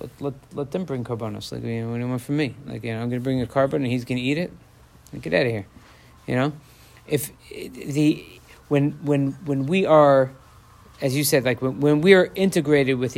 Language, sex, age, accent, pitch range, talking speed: English, male, 50-69, American, 120-140 Hz, 240 wpm